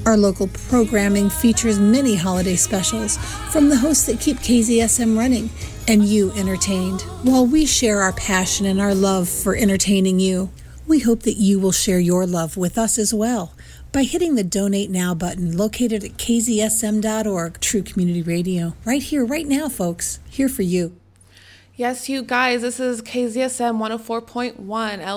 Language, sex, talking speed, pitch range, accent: English, female, 160 wpm, 215-275 Hz, American